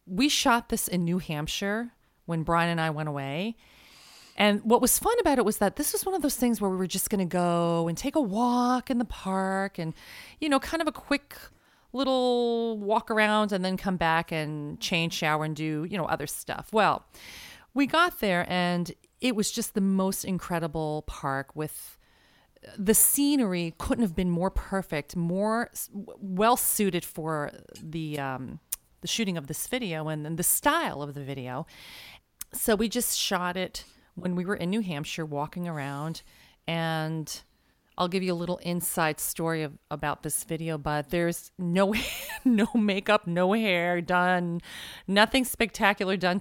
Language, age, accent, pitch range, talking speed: English, 30-49, American, 160-210 Hz, 175 wpm